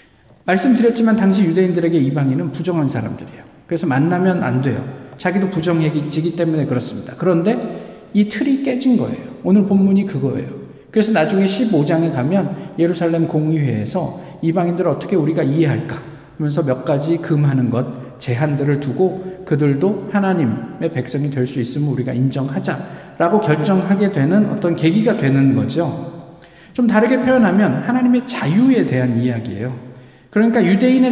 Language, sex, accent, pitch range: Korean, male, native, 140-210 Hz